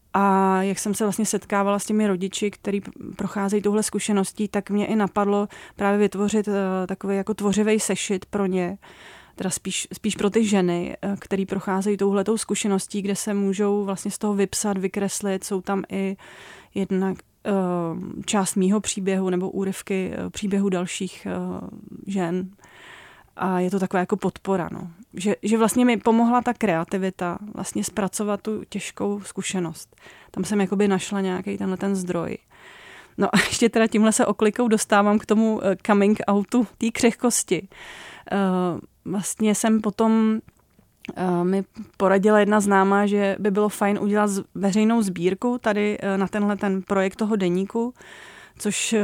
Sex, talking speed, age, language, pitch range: female, 150 wpm, 30-49, Czech, 190-215 Hz